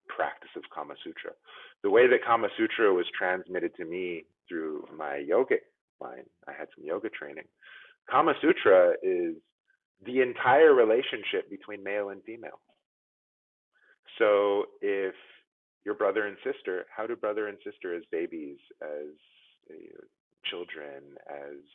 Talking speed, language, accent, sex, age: 130 wpm, English, American, male, 30-49